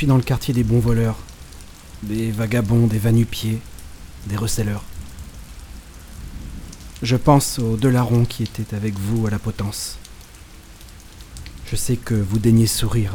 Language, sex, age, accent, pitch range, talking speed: French, male, 40-59, French, 85-115 Hz, 135 wpm